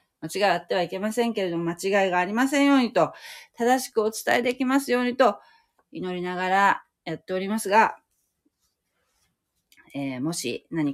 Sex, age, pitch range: female, 40-59, 165-245 Hz